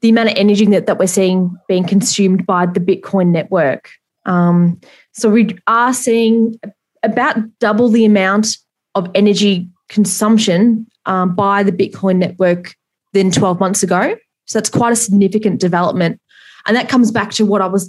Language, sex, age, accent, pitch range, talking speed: English, female, 20-39, Australian, 185-220 Hz, 165 wpm